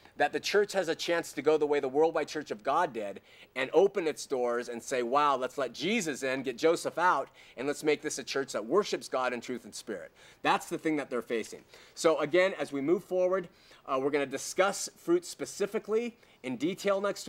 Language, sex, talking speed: English, male, 225 wpm